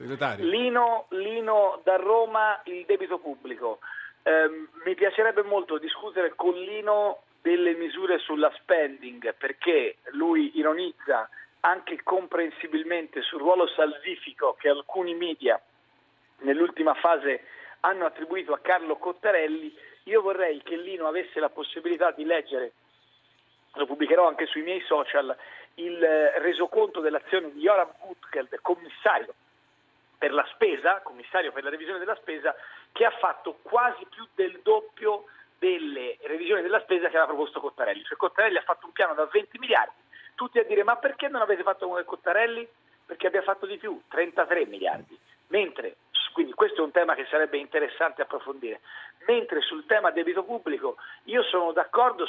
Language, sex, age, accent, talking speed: Italian, male, 40-59, native, 145 wpm